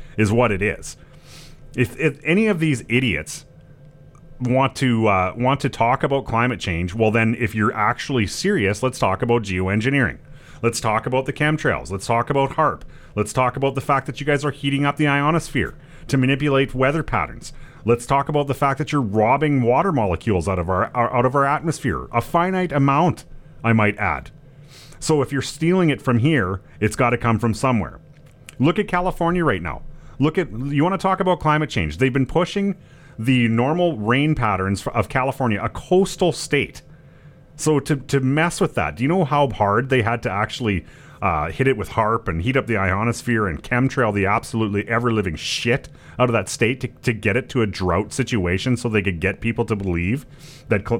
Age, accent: 30-49, American